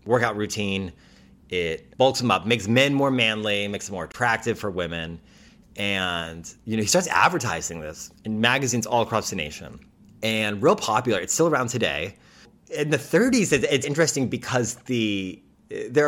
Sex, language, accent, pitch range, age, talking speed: male, English, American, 95-135 Hz, 30-49, 165 wpm